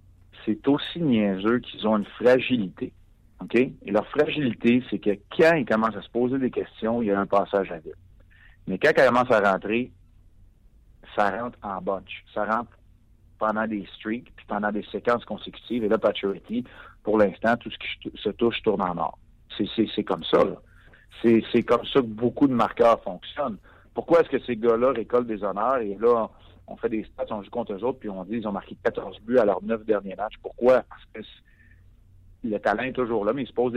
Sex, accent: male, French